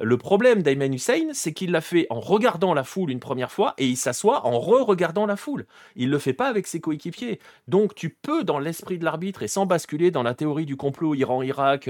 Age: 30-49